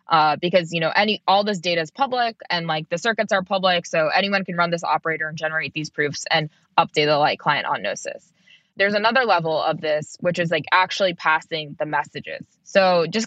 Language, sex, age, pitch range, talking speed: English, female, 20-39, 160-195 Hz, 215 wpm